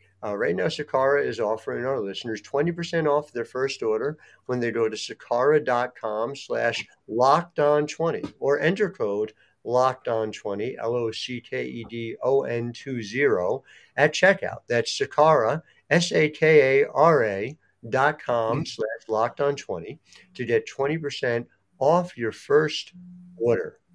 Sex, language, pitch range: male, English, 105-145 Hz